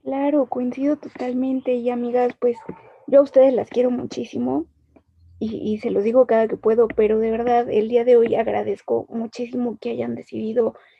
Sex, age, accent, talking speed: female, 20-39, Mexican, 175 wpm